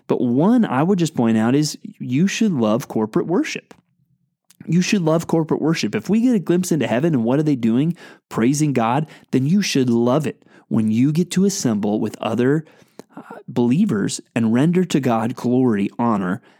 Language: English